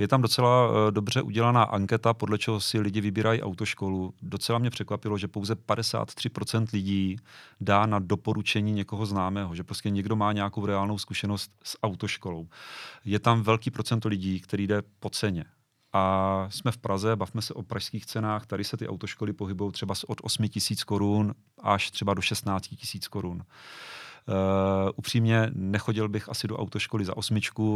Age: 30-49